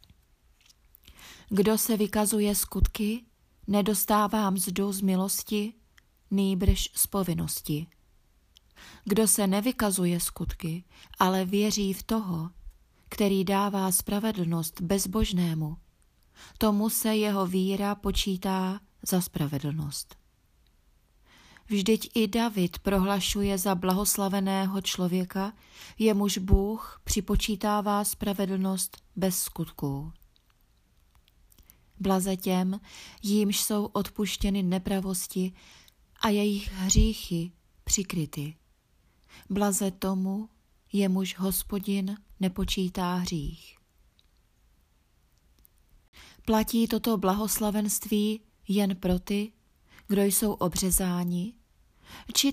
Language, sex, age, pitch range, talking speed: Czech, female, 30-49, 175-210 Hz, 80 wpm